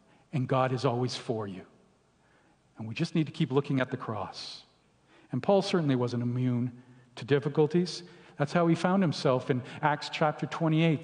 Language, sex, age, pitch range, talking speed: English, male, 50-69, 140-190 Hz, 175 wpm